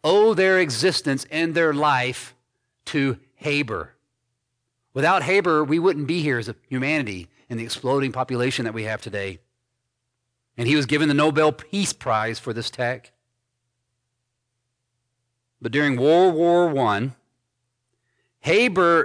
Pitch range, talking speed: 120-145 Hz, 130 wpm